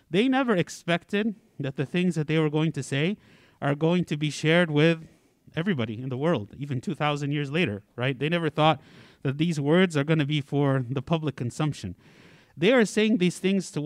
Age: 50-69